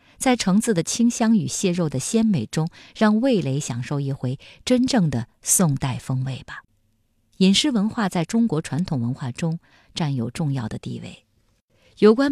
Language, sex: Chinese, female